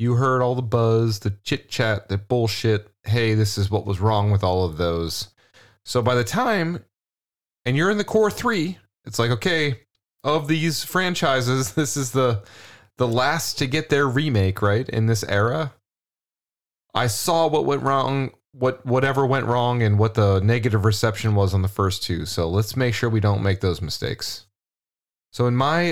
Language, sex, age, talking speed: English, male, 30-49, 185 wpm